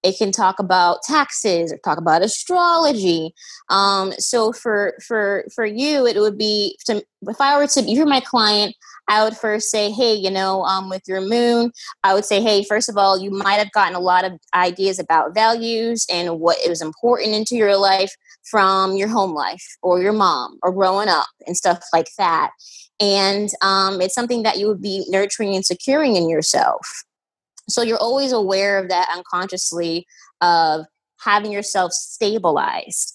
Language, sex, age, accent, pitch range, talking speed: English, female, 20-39, American, 180-230 Hz, 180 wpm